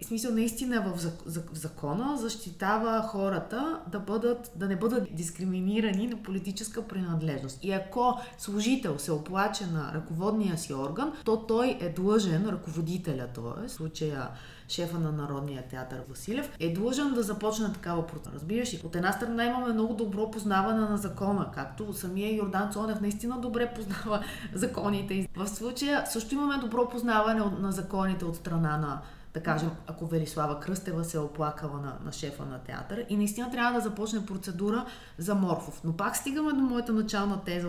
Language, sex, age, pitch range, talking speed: Bulgarian, female, 30-49, 165-225 Hz, 160 wpm